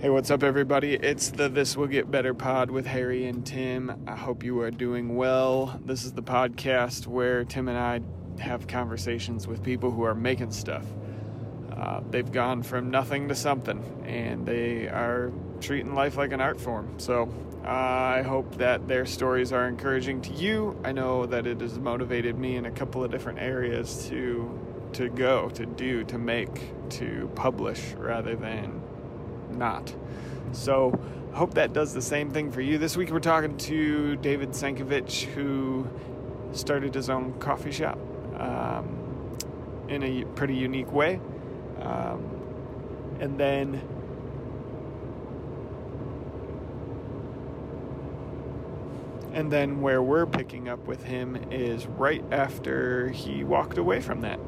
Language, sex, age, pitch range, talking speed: English, male, 30-49, 120-135 Hz, 150 wpm